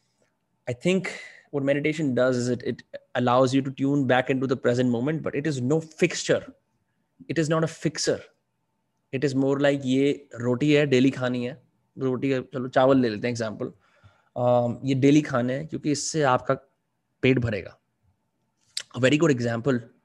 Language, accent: Hindi, native